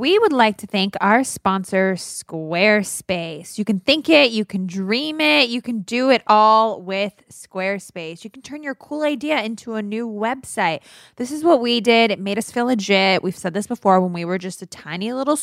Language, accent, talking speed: English, American, 210 wpm